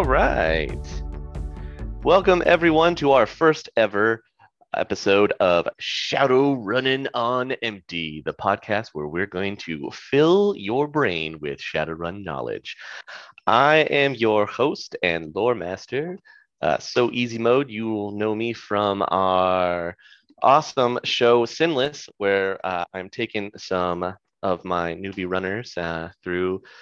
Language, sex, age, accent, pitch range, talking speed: English, male, 30-49, American, 90-135 Hz, 130 wpm